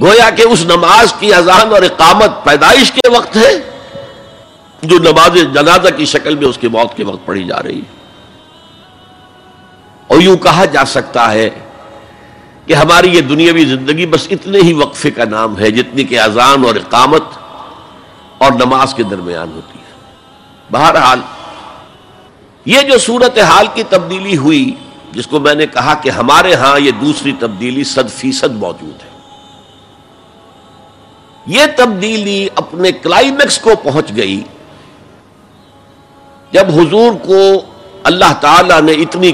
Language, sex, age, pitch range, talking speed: Urdu, male, 60-79, 140-220 Hz, 140 wpm